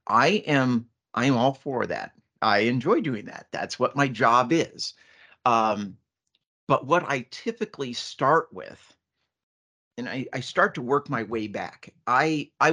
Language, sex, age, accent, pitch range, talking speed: English, male, 50-69, American, 110-140 Hz, 155 wpm